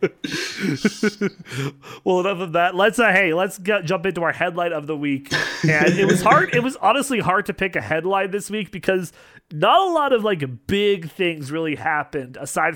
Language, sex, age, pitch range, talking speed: English, male, 30-49, 145-195 Hz, 195 wpm